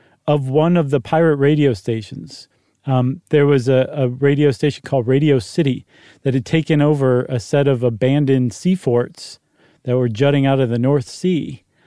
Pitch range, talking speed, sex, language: 130-150 Hz, 175 wpm, male, English